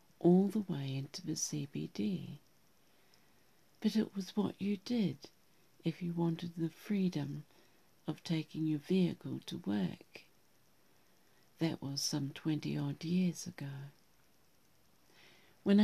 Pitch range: 150-180 Hz